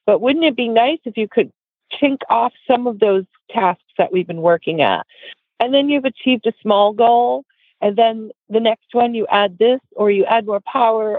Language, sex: English, female